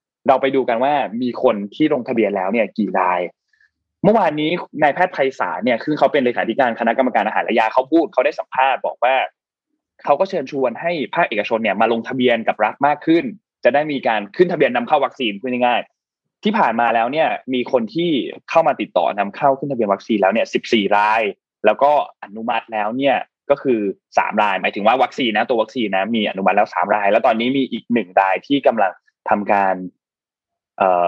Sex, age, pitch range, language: male, 20-39, 110-140 Hz, Thai